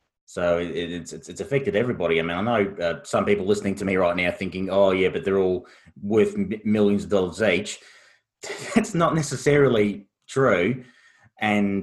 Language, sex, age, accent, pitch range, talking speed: English, male, 30-49, Australian, 85-105 Hz, 180 wpm